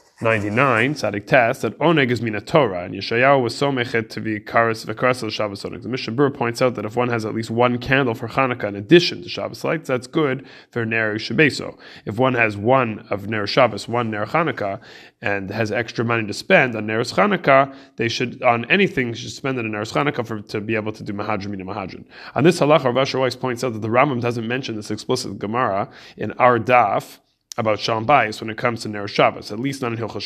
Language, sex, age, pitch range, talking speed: English, male, 30-49, 110-135 Hz, 220 wpm